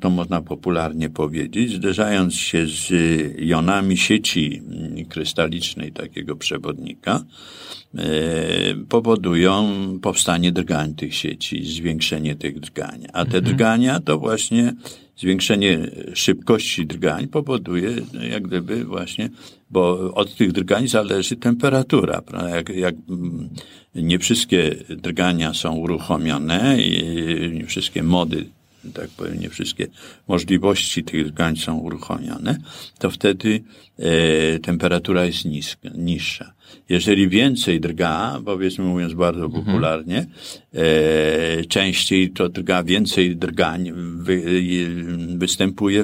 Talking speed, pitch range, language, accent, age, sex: 95 wpm, 80-100 Hz, Polish, native, 50-69, male